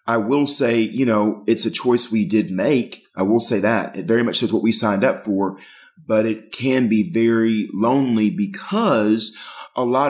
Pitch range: 105-125 Hz